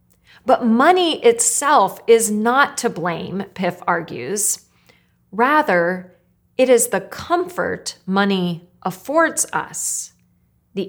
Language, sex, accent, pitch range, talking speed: English, female, American, 185-245 Hz, 95 wpm